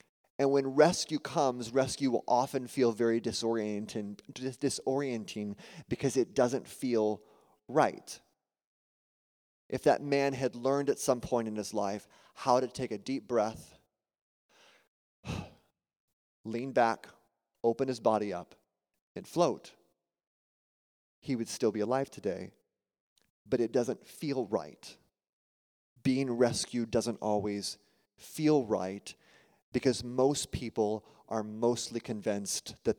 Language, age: English, 30-49